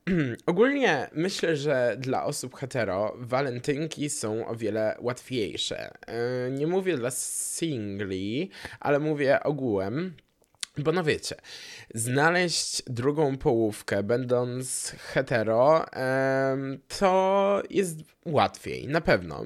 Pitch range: 115-160 Hz